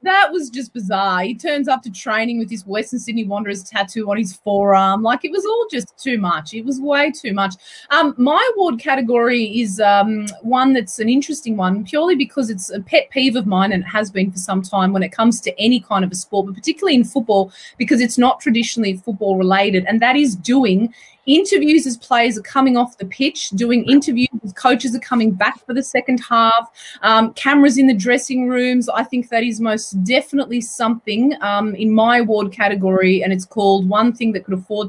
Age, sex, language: 30-49, female, English